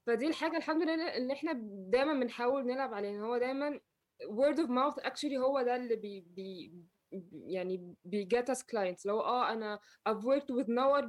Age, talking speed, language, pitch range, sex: 20-39, 170 wpm, Arabic, 210-260 Hz, female